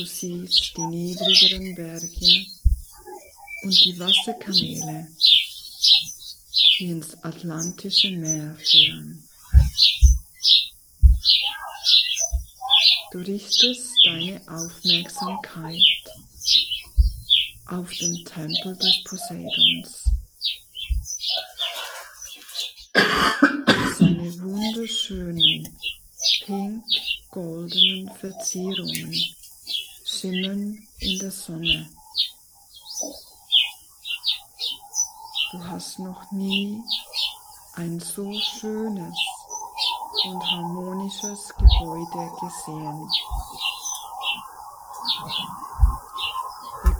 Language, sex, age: German, female, 50-69